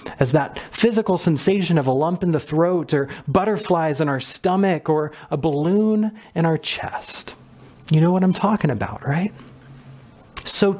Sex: male